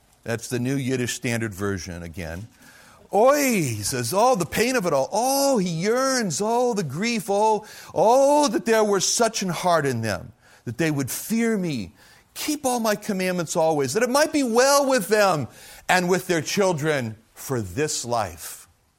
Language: English